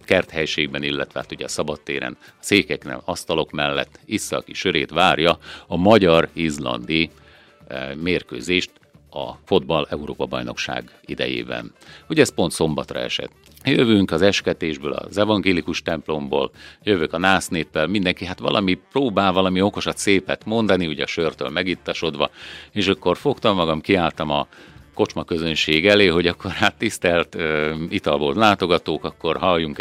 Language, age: Hungarian, 50-69